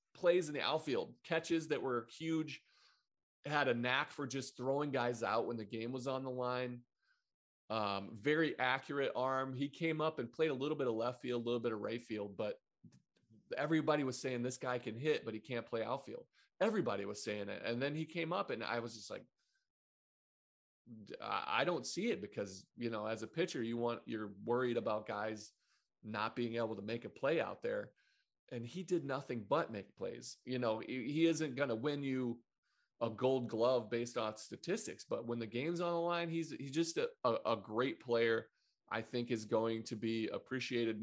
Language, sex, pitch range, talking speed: English, male, 110-135 Hz, 200 wpm